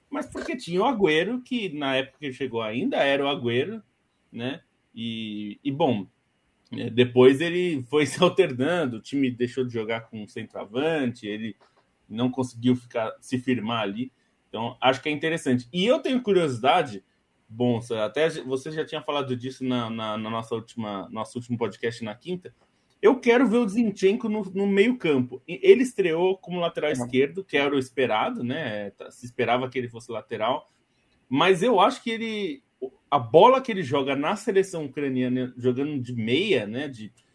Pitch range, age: 125-195 Hz, 20-39